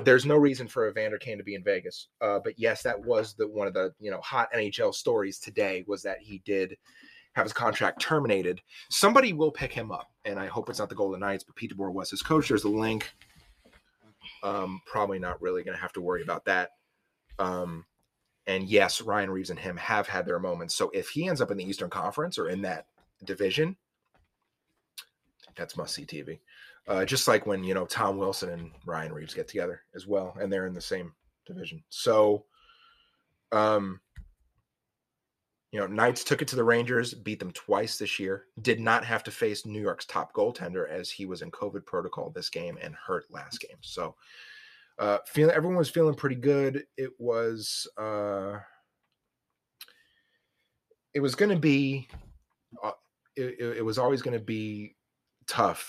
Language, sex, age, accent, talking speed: English, male, 30-49, American, 185 wpm